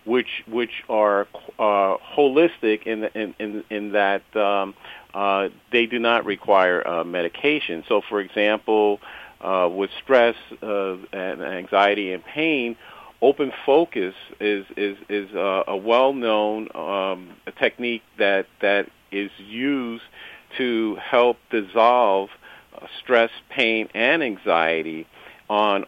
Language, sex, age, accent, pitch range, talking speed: English, male, 50-69, American, 100-115 Hz, 125 wpm